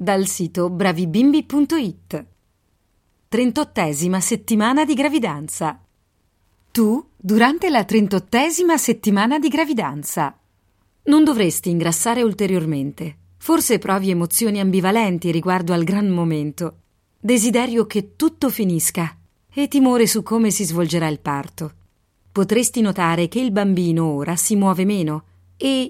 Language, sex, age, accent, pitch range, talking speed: Italian, female, 30-49, native, 165-245 Hz, 110 wpm